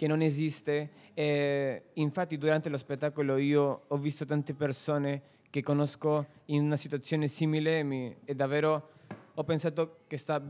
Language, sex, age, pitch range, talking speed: Italian, male, 20-39, 140-155 Hz, 150 wpm